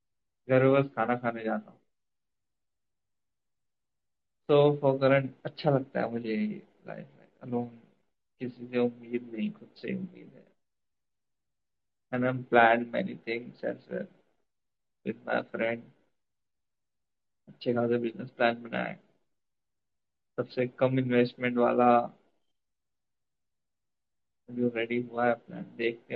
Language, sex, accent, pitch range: Hindi, male, native, 110-130 Hz